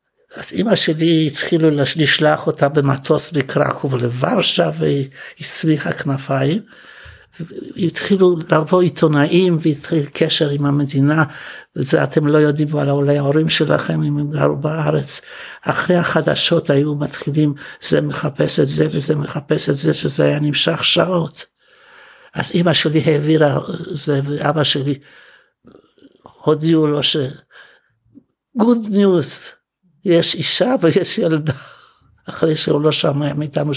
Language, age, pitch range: Hebrew, 60-79, 140-170 Hz